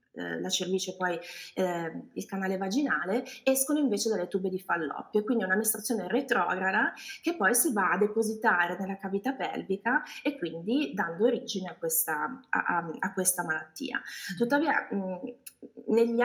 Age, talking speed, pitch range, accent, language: 20-39, 145 wpm, 180-230 Hz, native, Italian